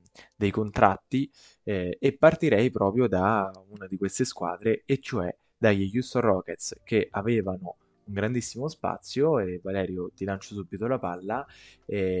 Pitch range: 95-115 Hz